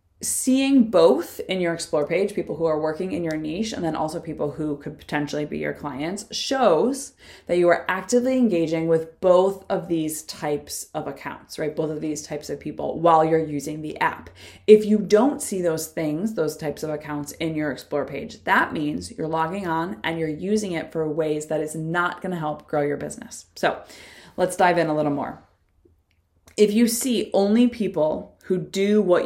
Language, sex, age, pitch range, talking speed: English, female, 20-39, 155-185 Hz, 200 wpm